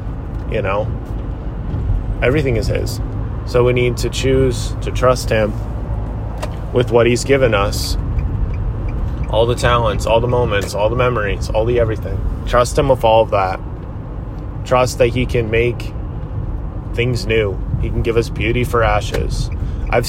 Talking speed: 150 wpm